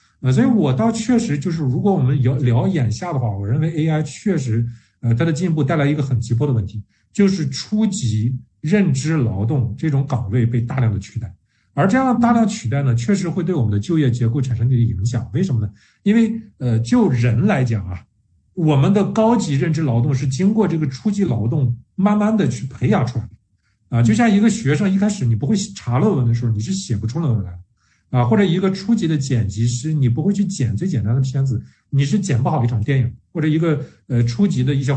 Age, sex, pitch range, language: 50-69, male, 115-160 Hz, Chinese